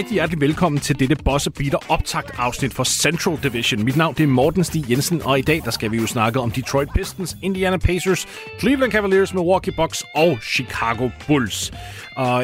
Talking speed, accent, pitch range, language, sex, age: 200 wpm, native, 115-155 Hz, Danish, male, 30-49